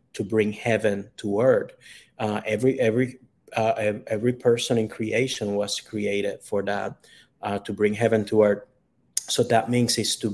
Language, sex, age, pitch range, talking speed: English, male, 30-49, 105-125 Hz, 165 wpm